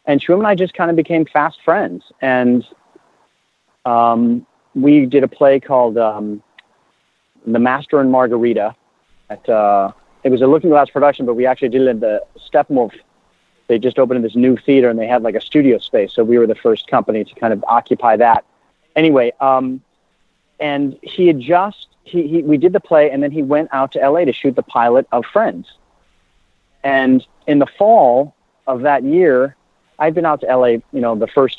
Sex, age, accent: male, 40-59, American